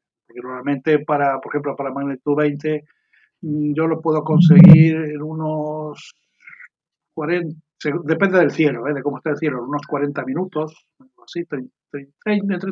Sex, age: male, 60-79